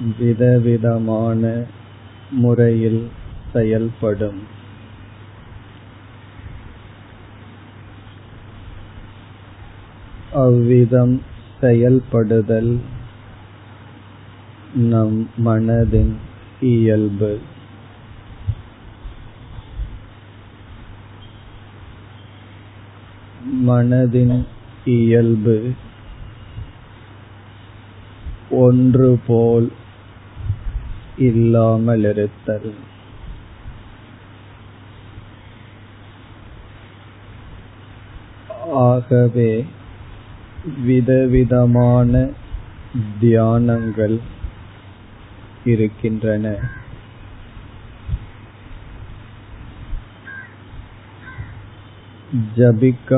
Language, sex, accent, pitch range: Tamil, male, native, 105-115 Hz